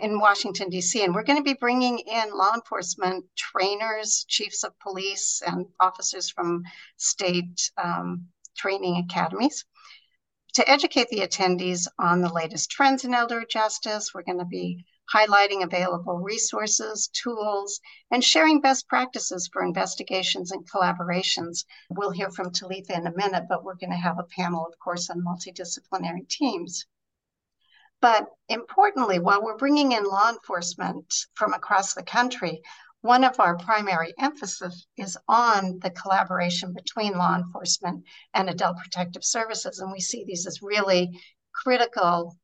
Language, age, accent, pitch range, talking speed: English, 50-69, American, 180-220 Hz, 145 wpm